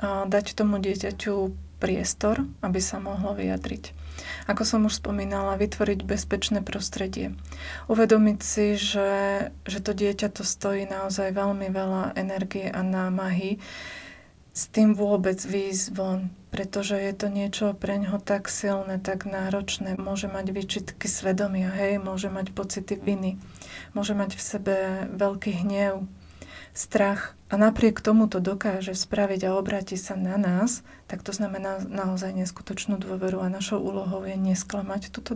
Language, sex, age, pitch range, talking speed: Slovak, female, 30-49, 190-205 Hz, 140 wpm